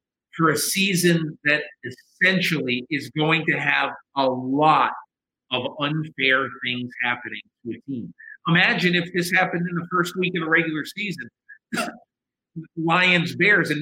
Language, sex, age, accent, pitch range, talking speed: English, male, 50-69, American, 145-175 Hz, 145 wpm